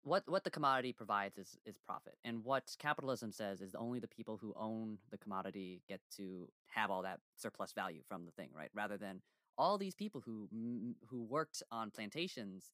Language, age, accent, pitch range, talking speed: English, 20-39, American, 95-115 Hz, 195 wpm